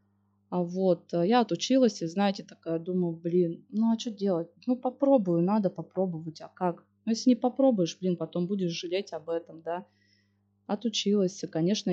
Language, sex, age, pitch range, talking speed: Russian, female, 20-39, 165-215 Hz, 160 wpm